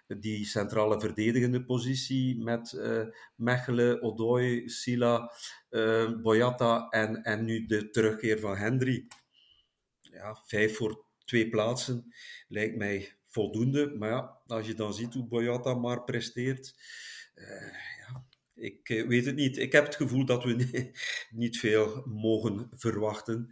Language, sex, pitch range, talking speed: Dutch, male, 105-120 Hz, 130 wpm